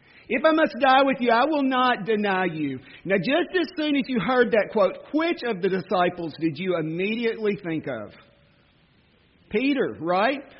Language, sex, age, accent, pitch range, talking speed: English, male, 40-59, American, 170-230 Hz, 175 wpm